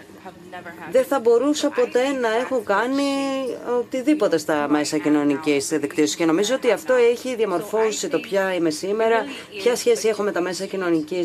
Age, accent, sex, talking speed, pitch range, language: 30-49, native, female, 155 wpm, 160-210 Hz, Greek